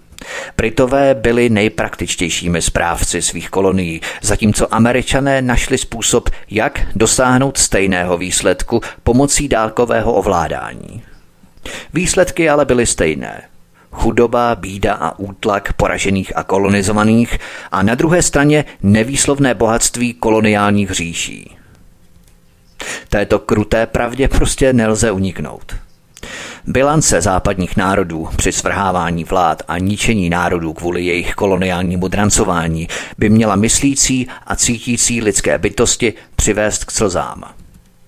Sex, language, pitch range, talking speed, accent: male, Czech, 95-120 Hz, 100 wpm, native